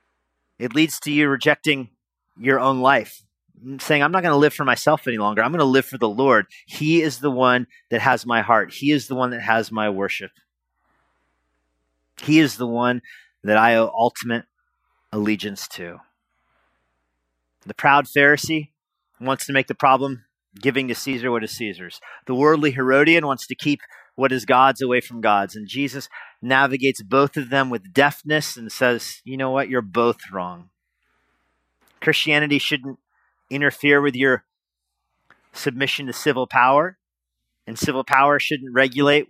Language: English